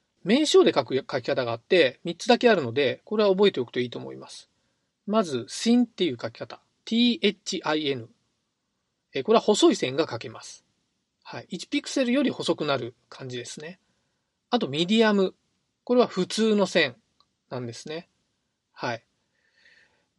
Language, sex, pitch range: Japanese, male, 150-230 Hz